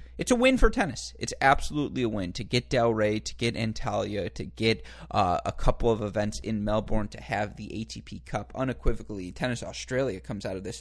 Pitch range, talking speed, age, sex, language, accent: 105-115 Hz, 200 wpm, 20-39, male, English, American